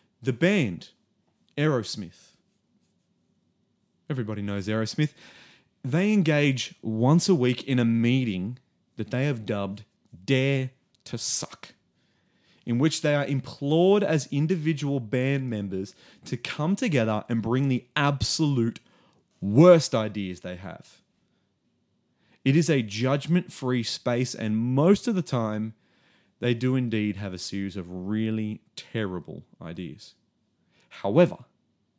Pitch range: 105-140 Hz